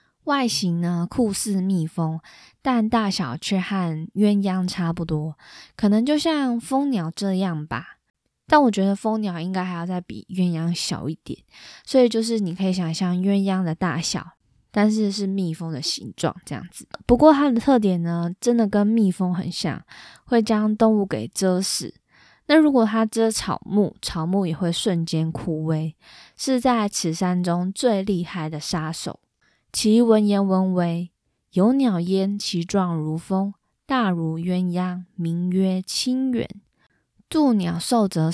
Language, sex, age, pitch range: Chinese, female, 20-39, 170-220 Hz